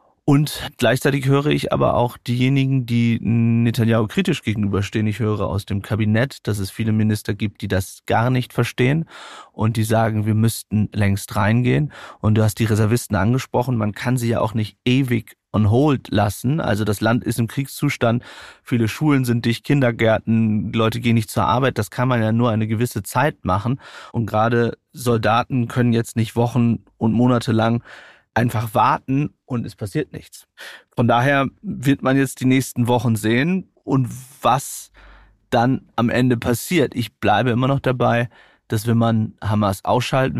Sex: male